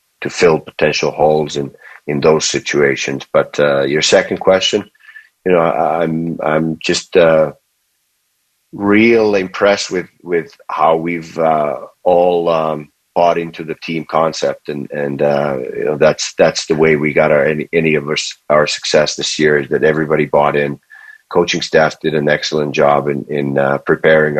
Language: English